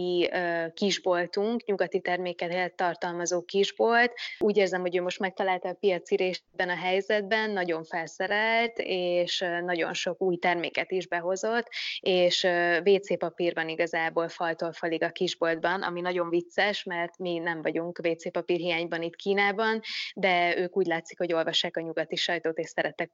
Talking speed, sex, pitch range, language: 140 wpm, female, 170-195 Hz, Hungarian